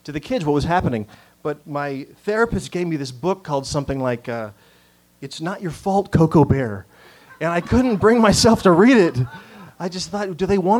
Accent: American